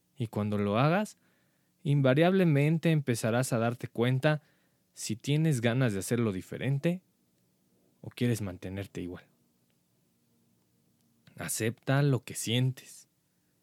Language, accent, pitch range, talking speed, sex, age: Spanish, Mexican, 105-140 Hz, 100 wpm, male, 20-39